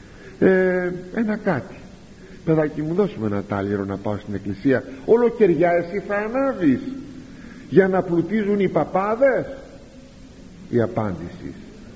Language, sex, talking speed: Greek, male, 110 wpm